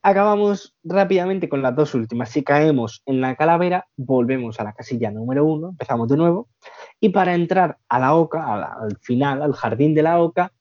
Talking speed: 200 wpm